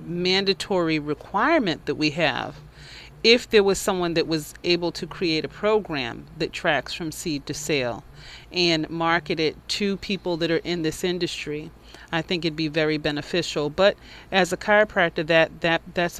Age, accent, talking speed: 30-49, American, 165 wpm